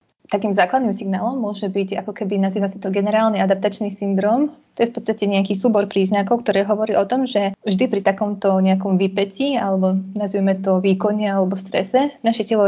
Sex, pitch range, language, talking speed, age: female, 190-210 Hz, Slovak, 180 wpm, 20-39